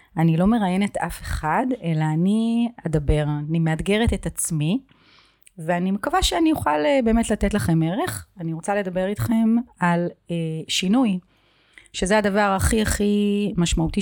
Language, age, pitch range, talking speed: Hebrew, 30-49, 160-200 Hz, 135 wpm